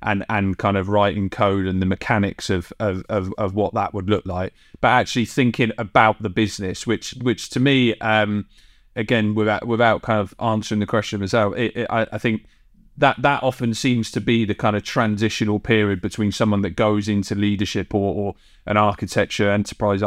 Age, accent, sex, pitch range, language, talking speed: 30-49, British, male, 100-115 Hz, English, 195 wpm